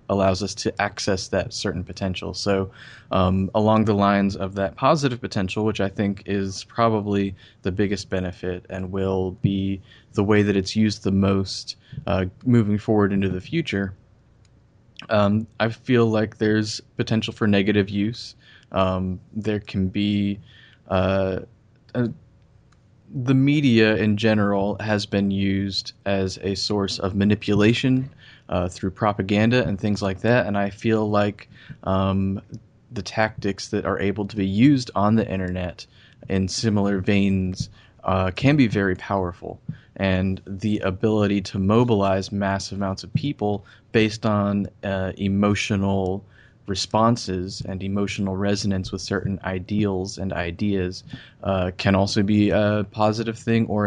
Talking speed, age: 140 wpm, 20-39